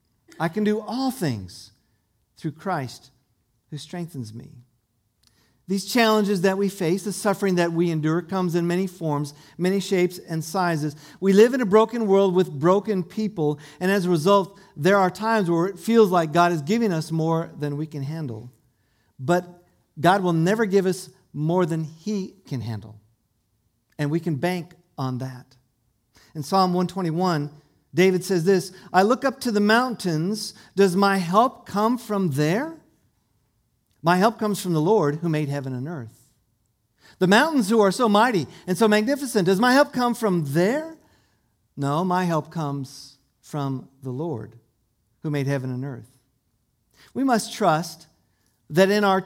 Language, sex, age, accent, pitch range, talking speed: English, male, 50-69, American, 140-195 Hz, 165 wpm